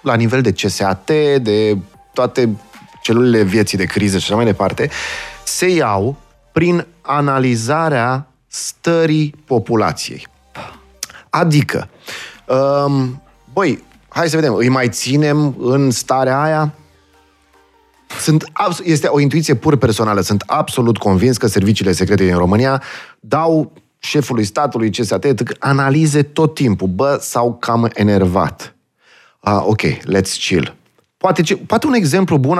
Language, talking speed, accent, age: Romanian, 120 wpm, native, 30-49